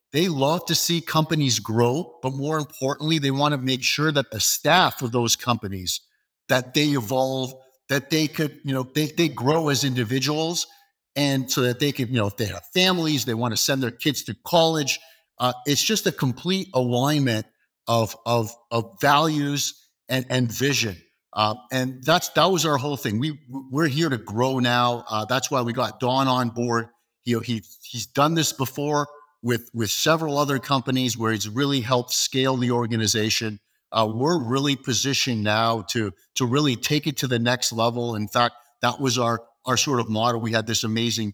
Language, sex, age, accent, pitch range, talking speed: English, male, 50-69, American, 115-145 Hz, 195 wpm